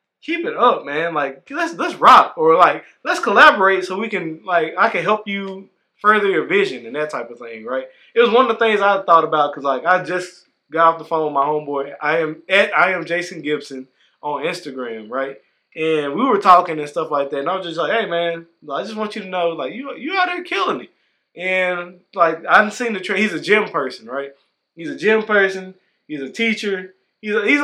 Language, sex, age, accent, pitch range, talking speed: English, male, 20-39, American, 145-215 Hz, 230 wpm